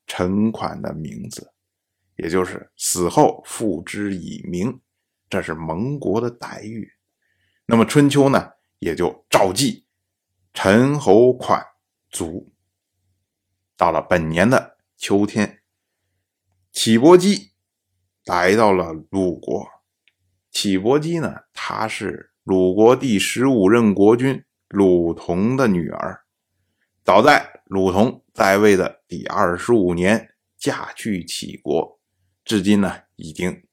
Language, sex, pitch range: Chinese, male, 95-110 Hz